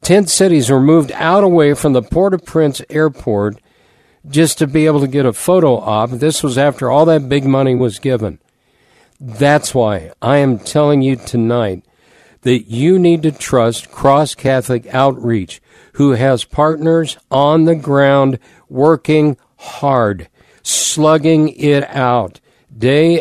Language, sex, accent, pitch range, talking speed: English, male, American, 120-155 Hz, 140 wpm